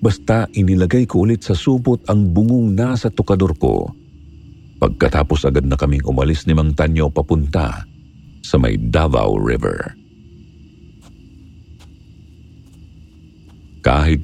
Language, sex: Filipino, male